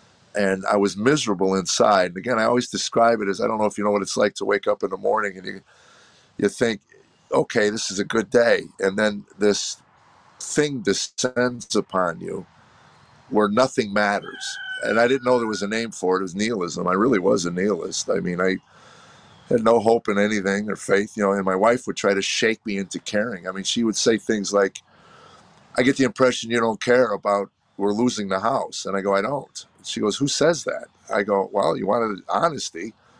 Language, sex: English, male